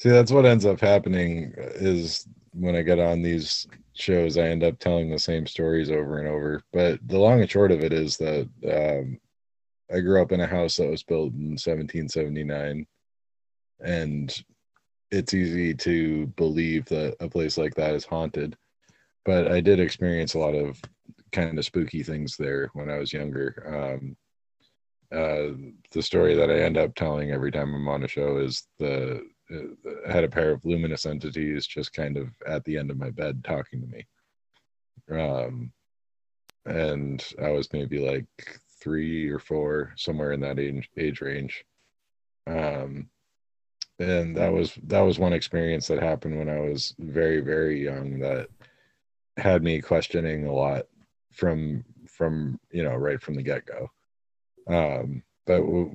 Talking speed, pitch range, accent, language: 165 wpm, 70-85 Hz, American, English